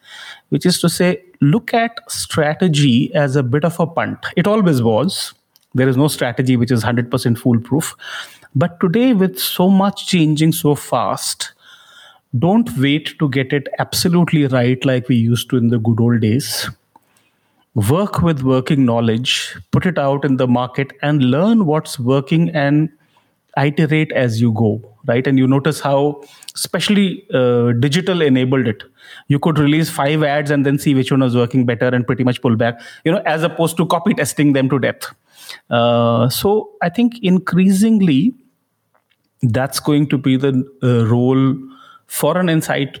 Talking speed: 165 wpm